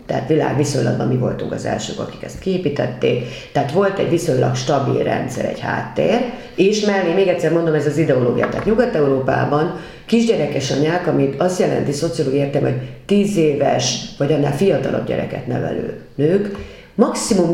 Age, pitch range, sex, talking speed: 40-59, 140-185 Hz, female, 150 wpm